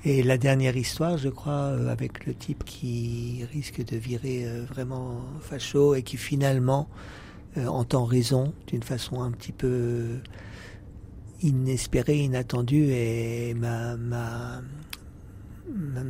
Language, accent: French, French